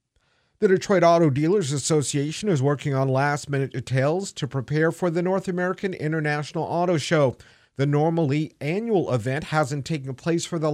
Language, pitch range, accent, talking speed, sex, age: English, 135-170 Hz, American, 155 wpm, male, 50-69